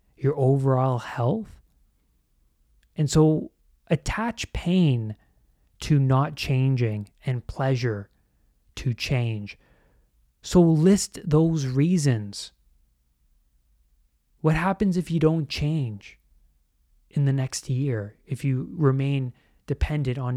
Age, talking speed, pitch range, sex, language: 30-49, 95 wpm, 105-150 Hz, male, English